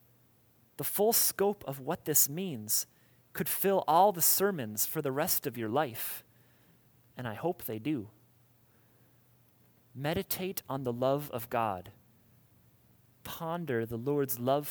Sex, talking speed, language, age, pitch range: male, 135 wpm, English, 30-49, 115-165 Hz